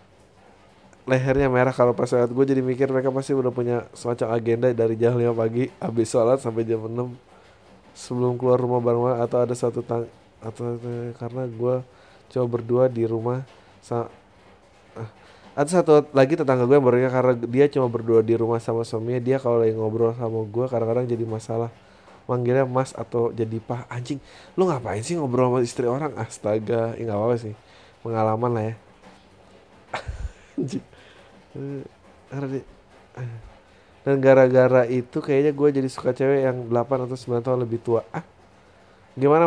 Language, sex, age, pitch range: Indonesian, male, 20-39, 115-130 Hz